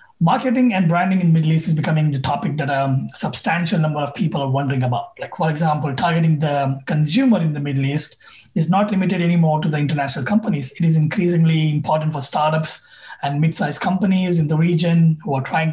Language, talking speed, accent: English, 200 wpm, Indian